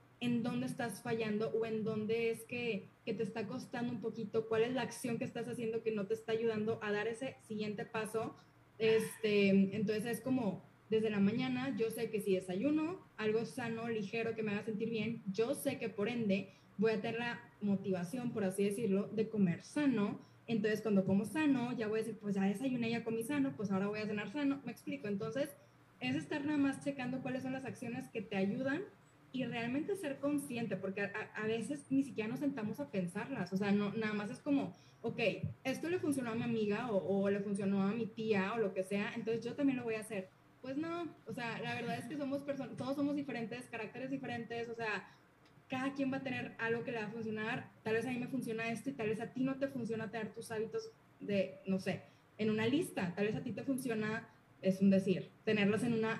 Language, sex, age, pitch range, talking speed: Spanish, female, 20-39, 210-245 Hz, 225 wpm